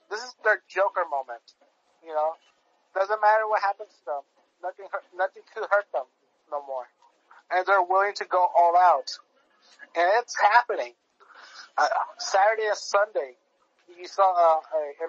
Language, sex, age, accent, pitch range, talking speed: English, male, 30-49, American, 165-200 Hz, 160 wpm